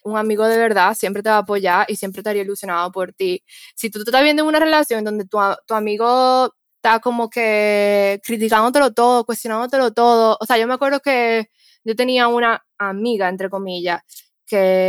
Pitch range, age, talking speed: 195-240 Hz, 10-29, 190 wpm